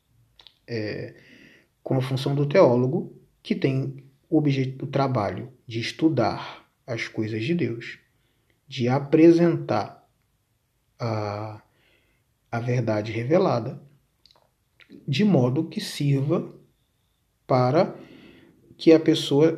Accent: Brazilian